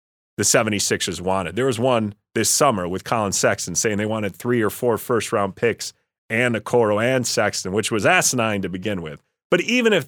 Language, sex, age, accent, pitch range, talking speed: English, male, 30-49, American, 105-140 Hz, 200 wpm